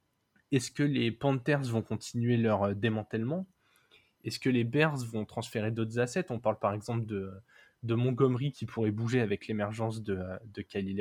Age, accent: 20-39, French